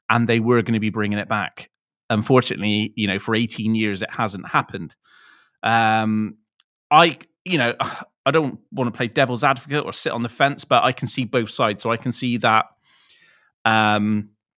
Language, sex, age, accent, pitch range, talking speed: English, male, 30-49, British, 110-135 Hz, 190 wpm